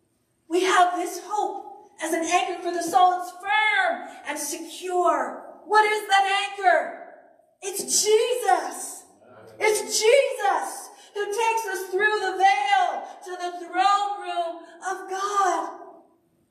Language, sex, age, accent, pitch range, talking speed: English, female, 40-59, American, 250-360 Hz, 125 wpm